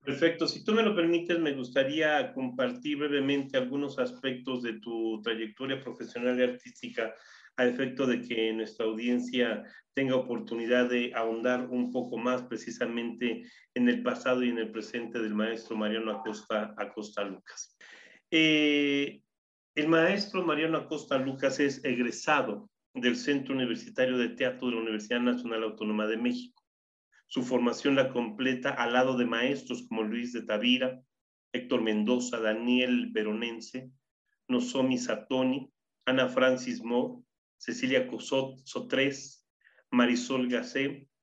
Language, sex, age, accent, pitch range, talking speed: Spanish, male, 40-59, Mexican, 120-140 Hz, 130 wpm